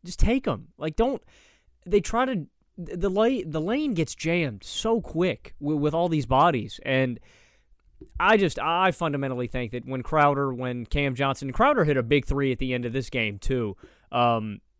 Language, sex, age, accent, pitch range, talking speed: English, male, 20-39, American, 130-190 Hz, 180 wpm